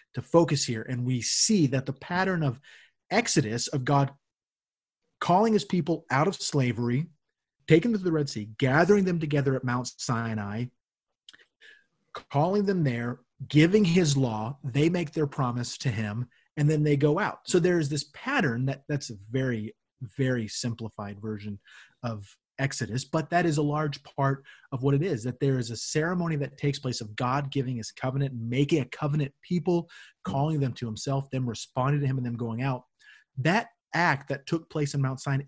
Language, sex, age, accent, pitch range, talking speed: English, male, 30-49, American, 120-150 Hz, 185 wpm